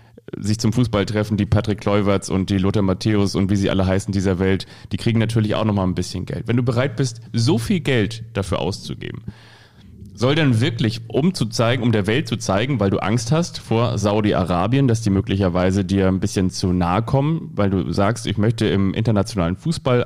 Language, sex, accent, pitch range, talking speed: German, male, German, 105-130 Hz, 200 wpm